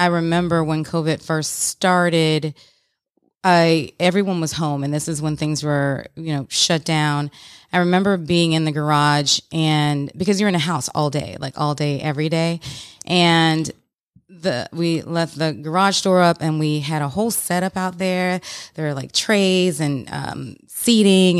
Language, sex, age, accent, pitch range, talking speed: English, female, 30-49, American, 150-175 Hz, 175 wpm